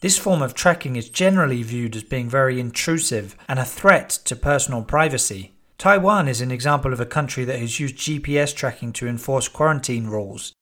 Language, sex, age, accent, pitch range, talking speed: English, male, 40-59, British, 125-155 Hz, 185 wpm